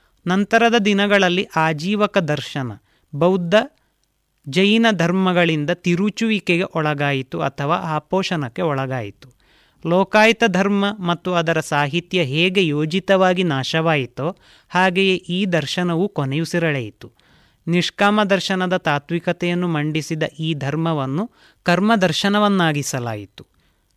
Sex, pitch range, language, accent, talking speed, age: male, 155-195 Hz, Kannada, native, 80 wpm, 30-49